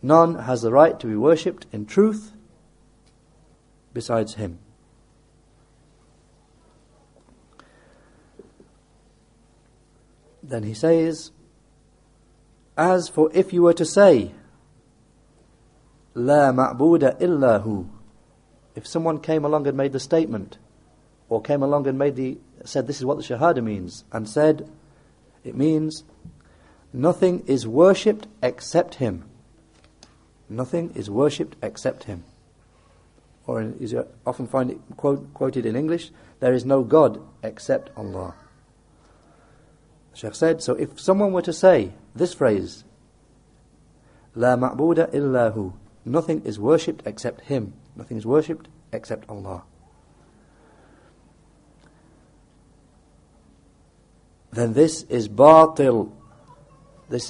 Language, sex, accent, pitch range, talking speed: English, male, British, 110-155 Hz, 110 wpm